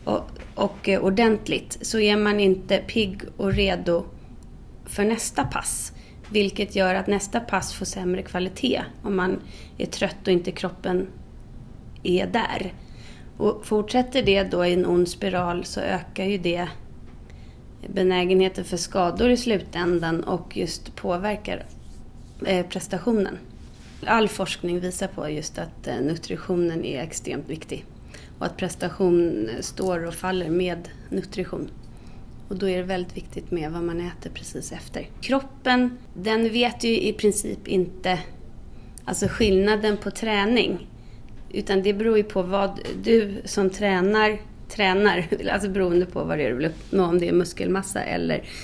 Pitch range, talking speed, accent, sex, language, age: 180-205 Hz, 140 wpm, Swedish, female, English, 30-49